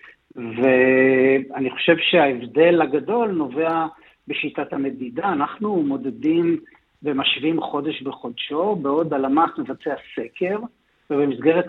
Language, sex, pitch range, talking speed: Hebrew, male, 145-205 Hz, 85 wpm